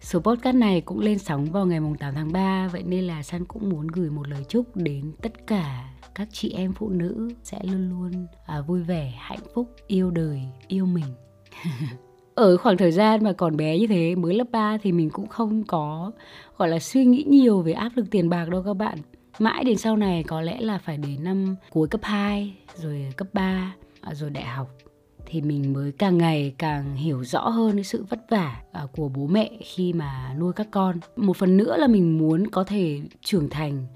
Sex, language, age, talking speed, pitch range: female, Vietnamese, 20-39, 215 wpm, 155-210 Hz